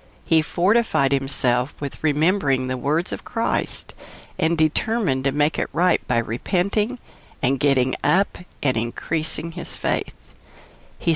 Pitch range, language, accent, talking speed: 135-175 Hz, English, American, 135 wpm